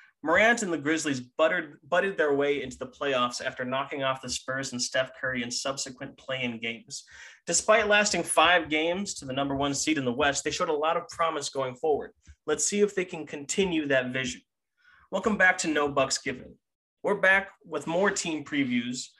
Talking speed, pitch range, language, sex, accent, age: 195 wpm, 130-180 Hz, English, male, American, 20-39